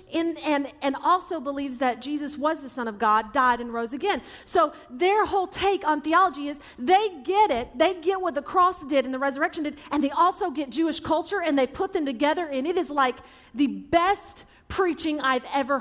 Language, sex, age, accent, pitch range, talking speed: English, female, 40-59, American, 255-330 Hz, 215 wpm